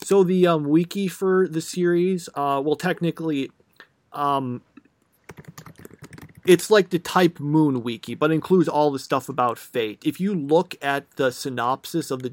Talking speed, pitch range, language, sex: 160 wpm, 130-165 Hz, English, male